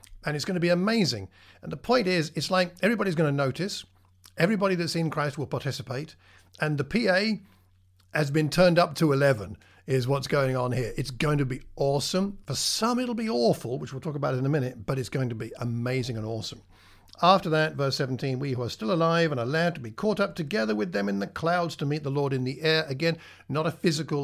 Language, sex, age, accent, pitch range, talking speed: English, male, 50-69, British, 110-160 Hz, 230 wpm